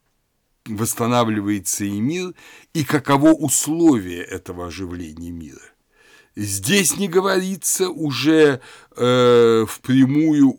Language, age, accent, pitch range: Russian, 60-79, native, 100-145 Hz